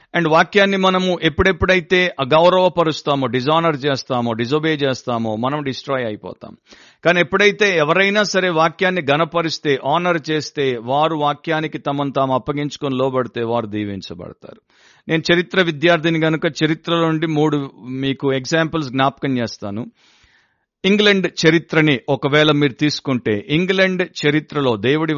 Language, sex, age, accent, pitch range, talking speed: Telugu, male, 50-69, native, 125-160 Hz, 110 wpm